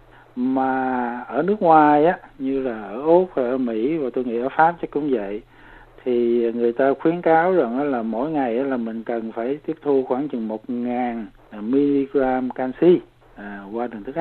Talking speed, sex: 185 wpm, male